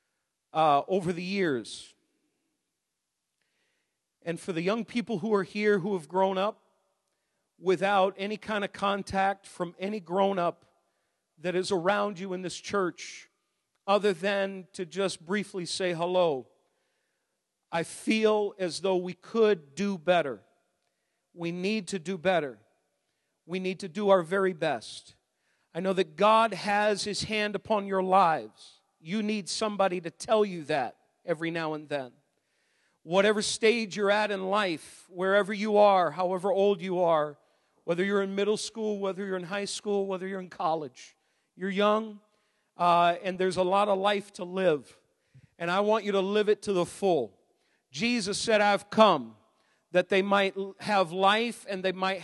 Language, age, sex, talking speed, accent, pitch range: English, 40-59, male, 160 wpm, American, 180-205 Hz